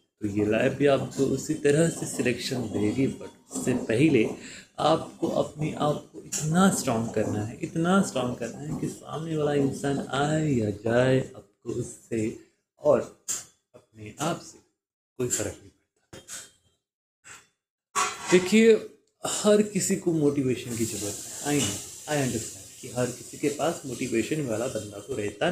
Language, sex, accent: Hindi, male, native